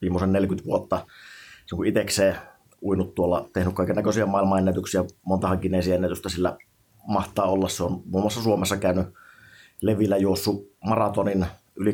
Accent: native